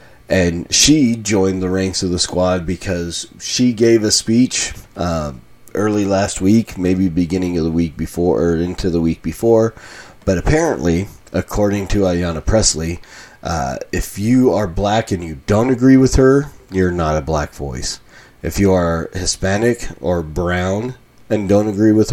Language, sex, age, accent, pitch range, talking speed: English, male, 30-49, American, 85-110 Hz, 160 wpm